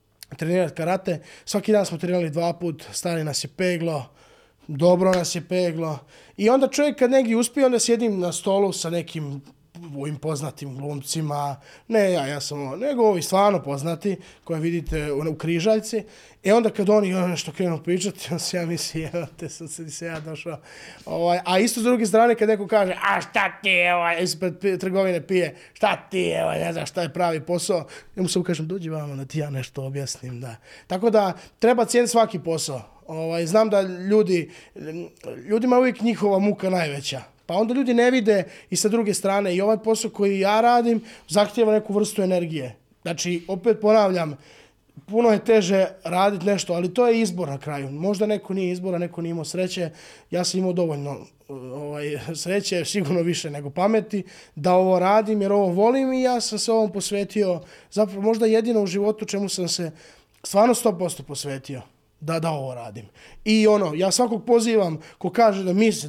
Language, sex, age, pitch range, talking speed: Croatian, male, 20-39, 160-210 Hz, 180 wpm